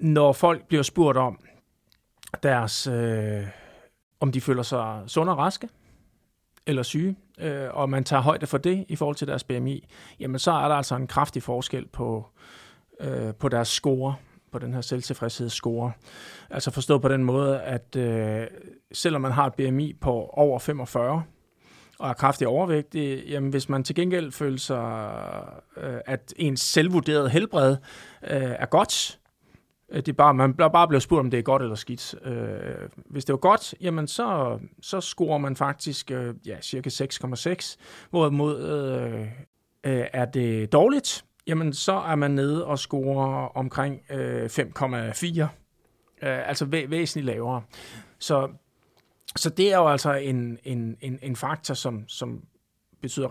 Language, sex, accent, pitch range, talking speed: Danish, male, native, 125-155 Hz, 150 wpm